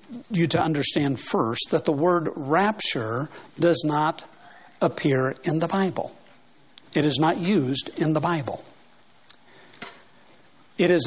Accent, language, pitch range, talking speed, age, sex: American, English, 145-195 Hz, 125 wpm, 60-79, male